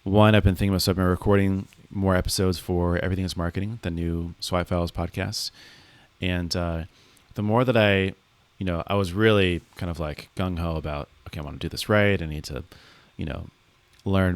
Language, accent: English, American